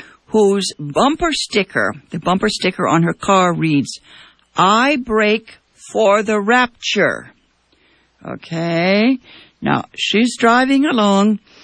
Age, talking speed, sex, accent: 60-79, 105 wpm, female, American